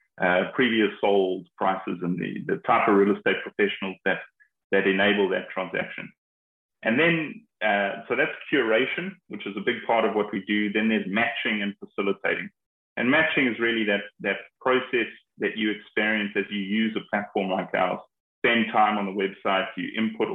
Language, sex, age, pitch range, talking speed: English, male, 30-49, 95-110 Hz, 180 wpm